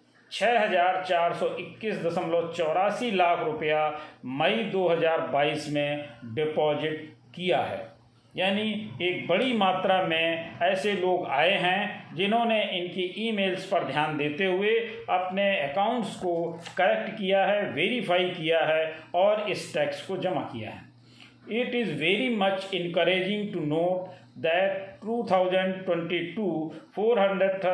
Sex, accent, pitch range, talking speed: male, native, 155-195 Hz, 125 wpm